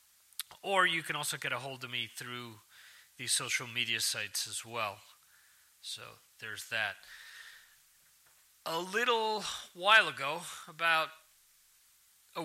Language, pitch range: English, 130-170 Hz